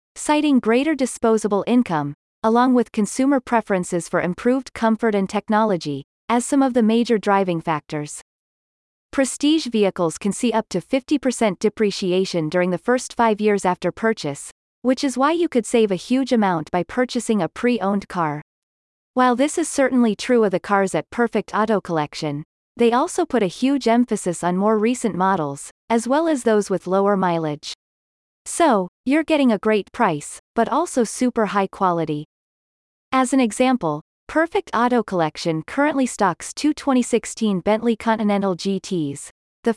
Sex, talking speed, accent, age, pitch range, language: female, 155 wpm, American, 30-49, 180-245 Hz, English